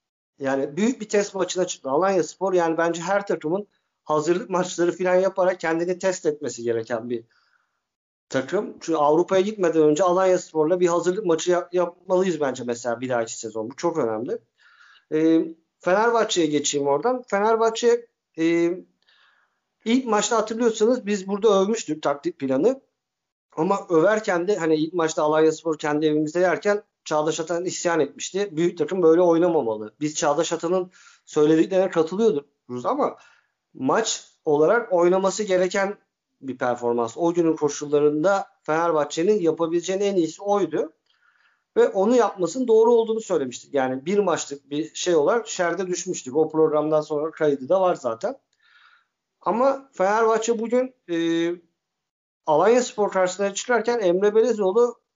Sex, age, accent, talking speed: male, 50-69, native, 135 wpm